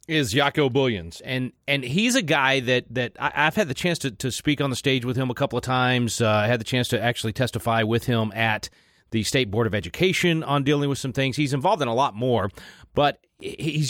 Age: 30-49